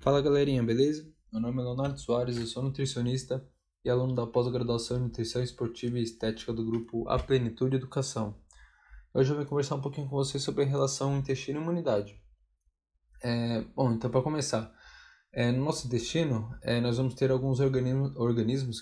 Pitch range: 115-135 Hz